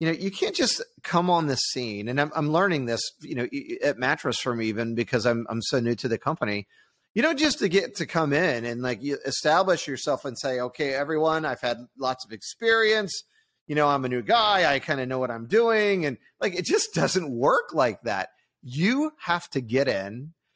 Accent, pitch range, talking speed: American, 125-160 Hz, 220 wpm